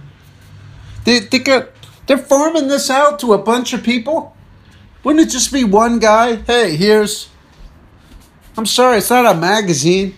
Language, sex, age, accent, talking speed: English, male, 50-69, American, 145 wpm